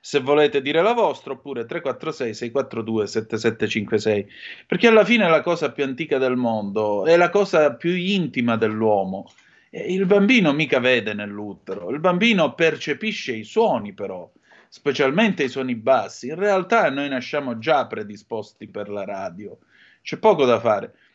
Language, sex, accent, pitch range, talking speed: Italian, male, native, 120-185 Hz, 150 wpm